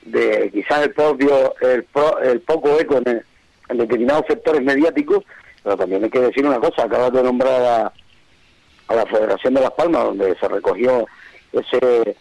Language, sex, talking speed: Spanish, male, 170 wpm